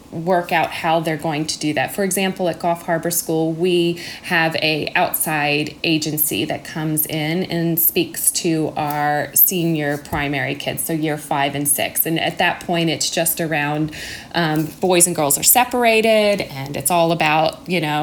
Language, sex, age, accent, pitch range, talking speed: English, female, 30-49, American, 155-185 Hz, 175 wpm